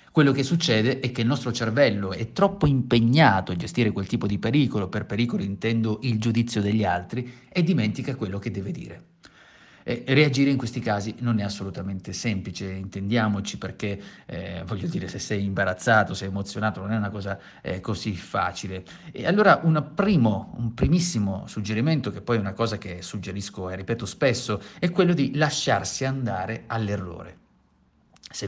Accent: native